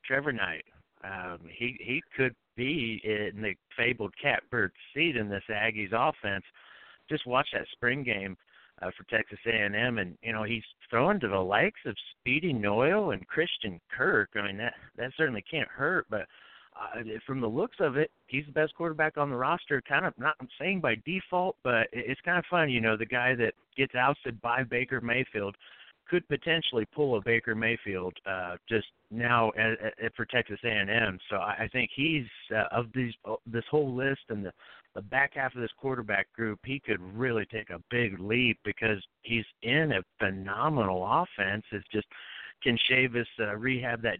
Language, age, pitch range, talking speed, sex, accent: English, 50-69, 105-135 Hz, 185 wpm, male, American